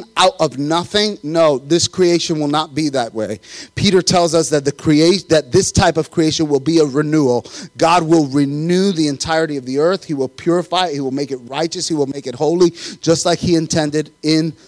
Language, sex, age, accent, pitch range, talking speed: English, male, 30-49, American, 145-185 Hz, 215 wpm